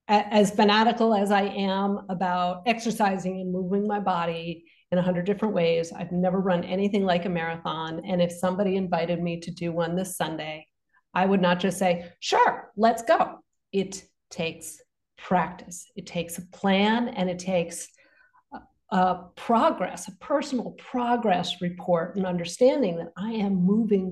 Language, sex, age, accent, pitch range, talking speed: English, female, 50-69, American, 180-225 Hz, 160 wpm